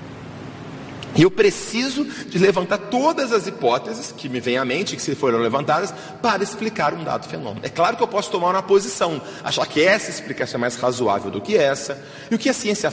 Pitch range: 165-235 Hz